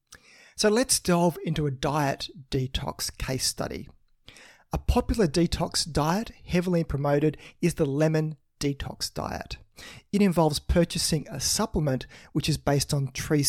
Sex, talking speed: male, 135 wpm